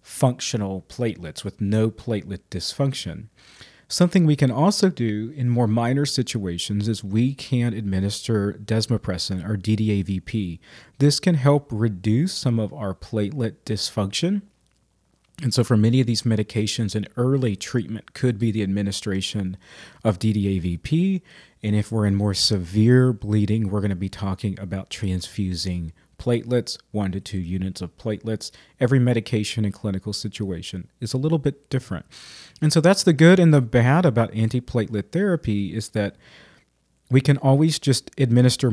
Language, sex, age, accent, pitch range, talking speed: English, male, 40-59, American, 100-130 Hz, 150 wpm